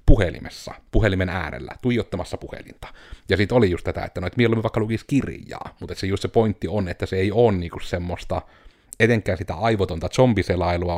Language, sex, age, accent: Finnish, male, 30-49, native